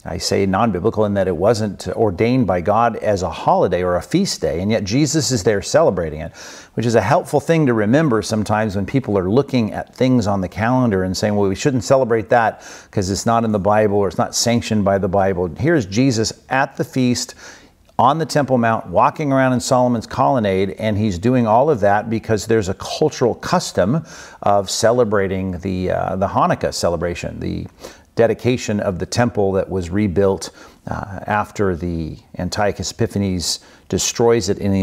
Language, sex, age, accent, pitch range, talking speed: English, male, 50-69, American, 95-120 Hz, 190 wpm